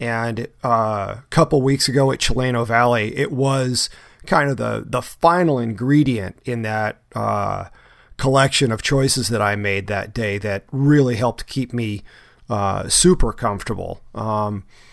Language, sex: English, male